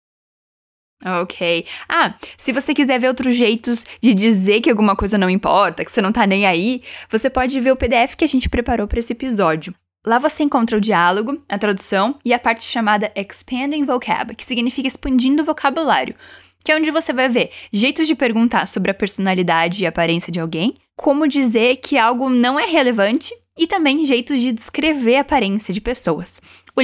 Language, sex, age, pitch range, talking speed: Portuguese, female, 10-29, 210-275 Hz, 190 wpm